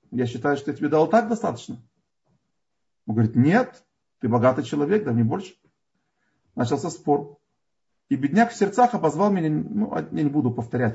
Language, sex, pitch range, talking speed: Russian, male, 120-195 Hz, 165 wpm